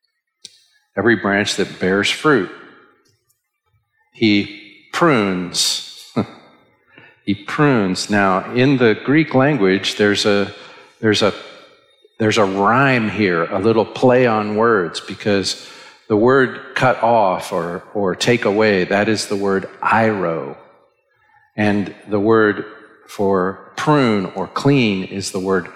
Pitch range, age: 95-115 Hz, 50-69